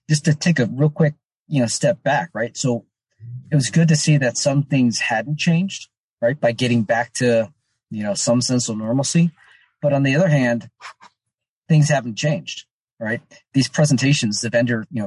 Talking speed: 185 wpm